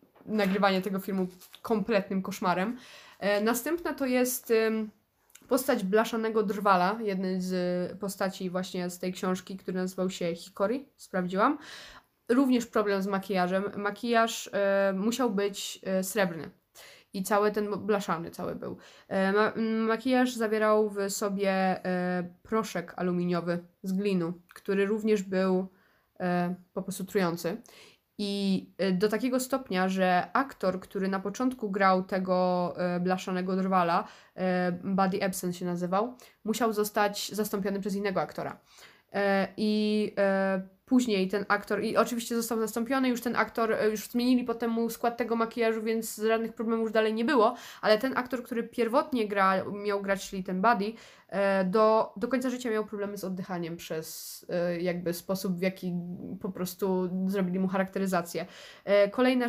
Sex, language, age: female, Polish, 20-39